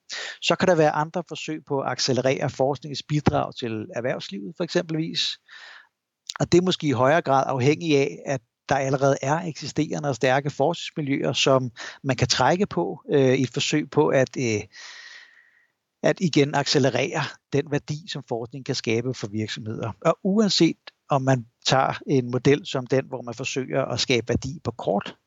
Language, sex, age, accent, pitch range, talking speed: Danish, male, 60-79, native, 125-155 Hz, 170 wpm